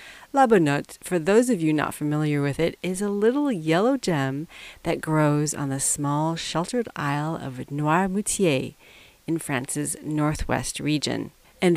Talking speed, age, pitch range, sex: 150 wpm, 40-59, 145-185 Hz, female